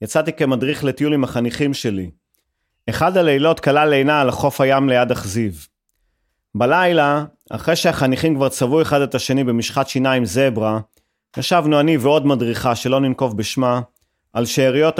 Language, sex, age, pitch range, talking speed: Hebrew, male, 30-49, 120-165 Hz, 140 wpm